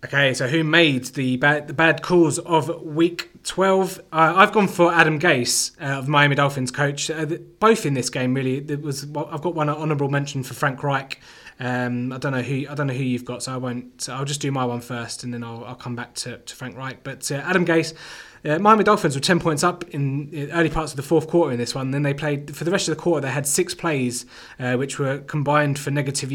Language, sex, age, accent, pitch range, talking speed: English, male, 20-39, British, 125-155 Hz, 255 wpm